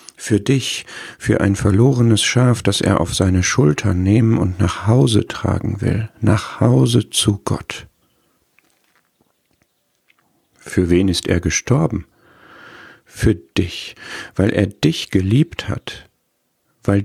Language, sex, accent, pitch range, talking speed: German, male, German, 95-120 Hz, 120 wpm